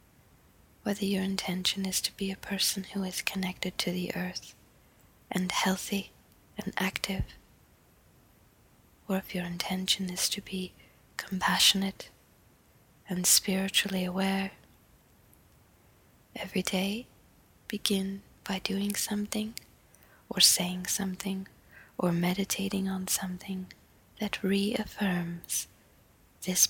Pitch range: 180-195 Hz